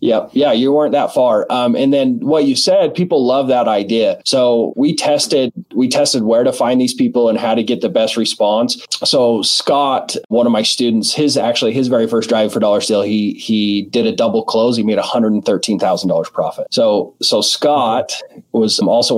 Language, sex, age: English, male, 30-49